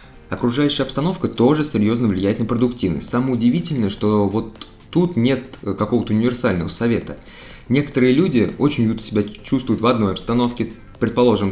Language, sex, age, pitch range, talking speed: Russian, male, 20-39, 100-125 Hz, 130 wpm